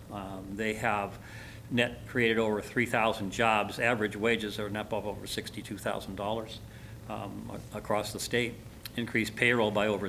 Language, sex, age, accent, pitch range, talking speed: English, male, 50-69, American, 105-115 Hz, 130 wpm